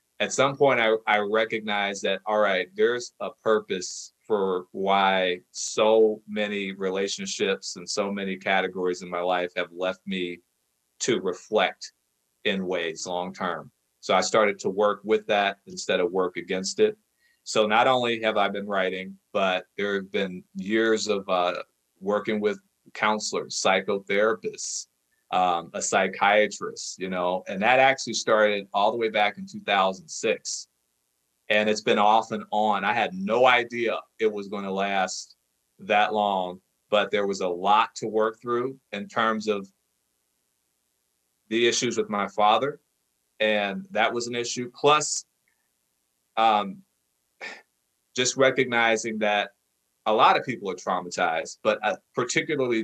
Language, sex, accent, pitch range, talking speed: English, male, American, 95-120 Hz, 145 wpm